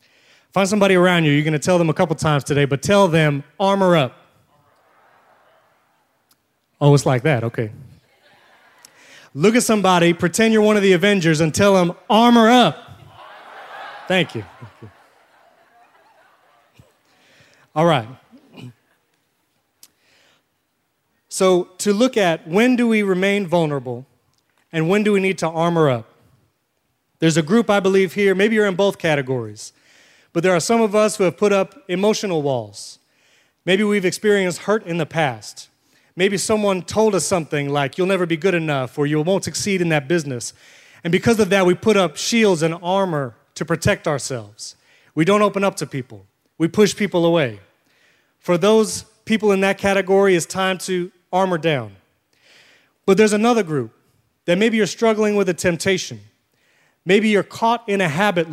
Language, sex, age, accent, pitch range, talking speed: English, male, 30-49, American, 145-200 Hz, 160 wpm